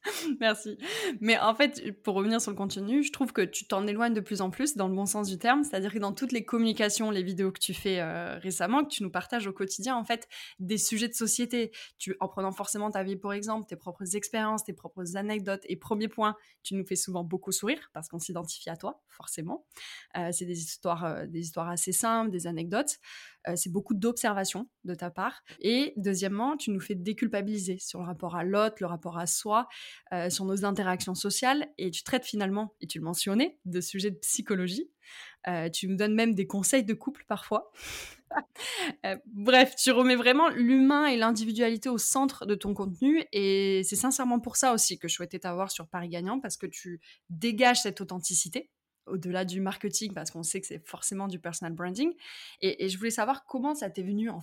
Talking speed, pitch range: 215 wpm, 185-235 Hz